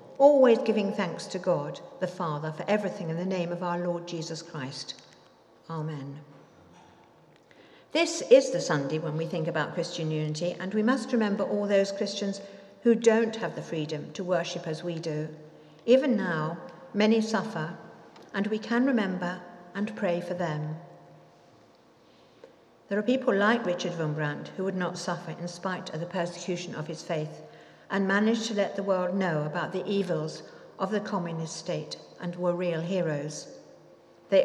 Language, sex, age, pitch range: English, female, 50-69, 160-205 Hz